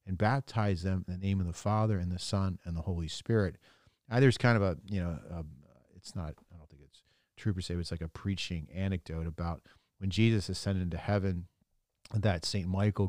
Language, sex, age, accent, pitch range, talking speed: English, male, 40-59, American, 90-110 Hz, 220 wpm